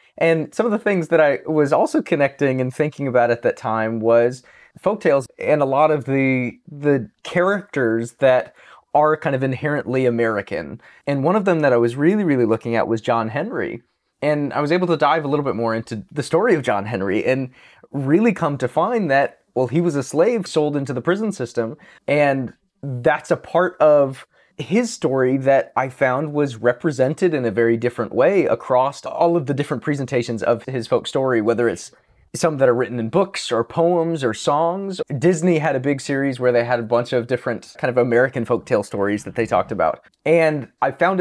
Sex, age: male, 20-39